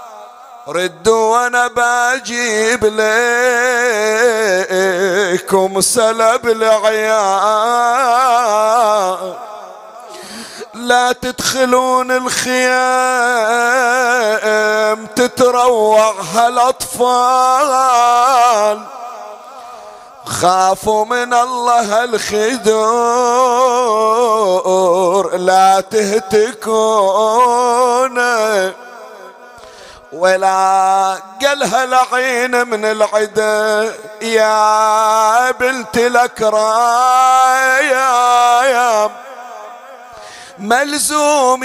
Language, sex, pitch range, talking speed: Arabic, male, 215-245 Hz, 35 wpm